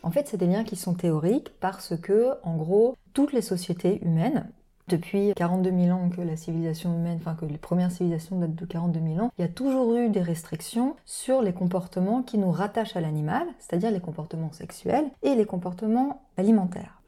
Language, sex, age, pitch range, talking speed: French, female, 20-39, 165-215 Hz, 200 wpm